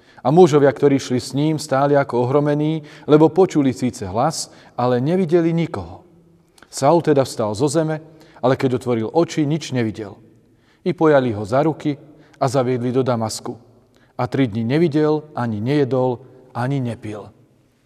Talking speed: 150 wpm